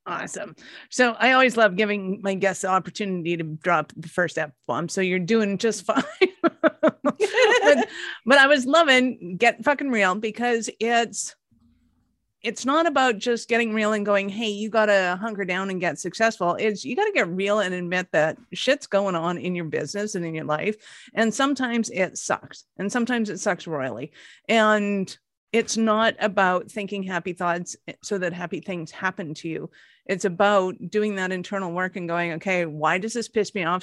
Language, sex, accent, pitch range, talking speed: English, female, American, 185-245 Hz, 185 wpm